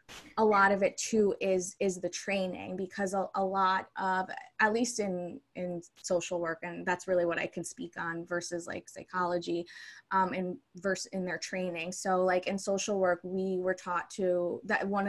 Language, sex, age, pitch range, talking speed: English, female, 20-39, 180-195 Hz, 190 wpm